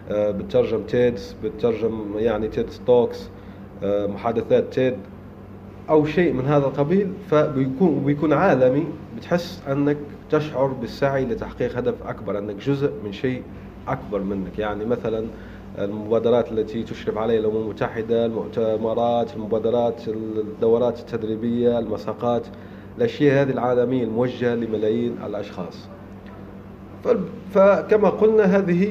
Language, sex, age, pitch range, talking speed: Arabic, male, 30-49, 105-145 Hz, 110 wpm